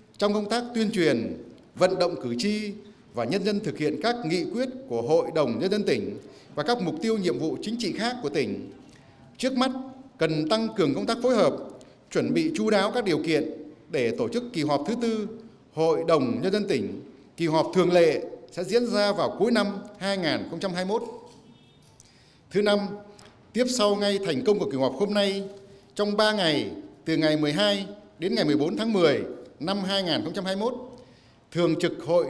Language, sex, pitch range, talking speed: Vietnamese, male, 155-215 Hz, 190 wpm